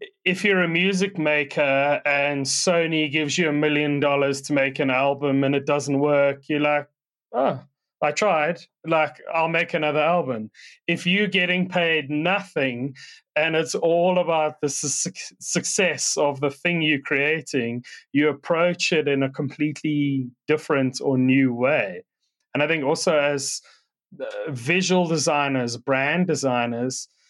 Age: 30-49